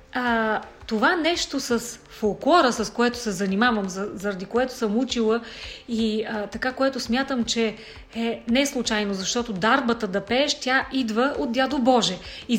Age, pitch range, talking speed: 30-49, 230-295 Hz, 155 wpm